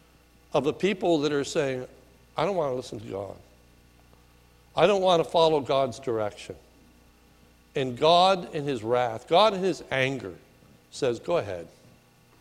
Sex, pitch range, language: male, 130-175 Hz, English